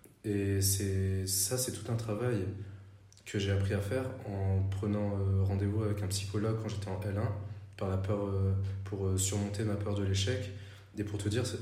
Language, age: French, 20-39